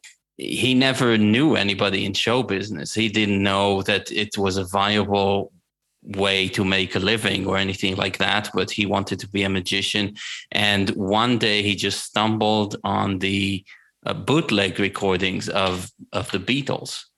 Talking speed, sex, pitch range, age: 160 wpm, male, 100-120 Hz, 30-49